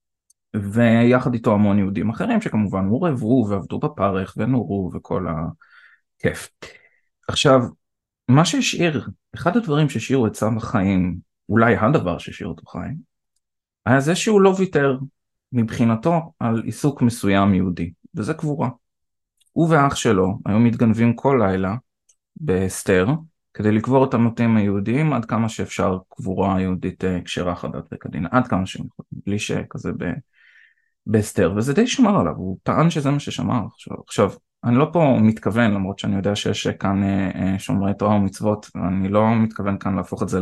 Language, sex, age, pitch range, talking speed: Hebrew, male, 20-39, 95-125 Hz, 140 wpm